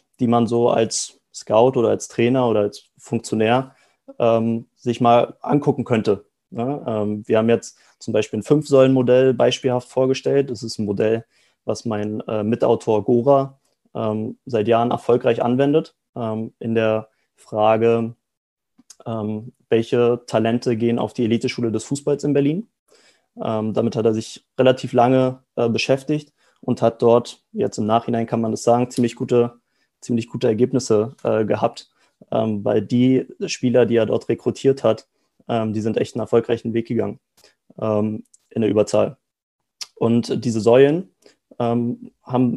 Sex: male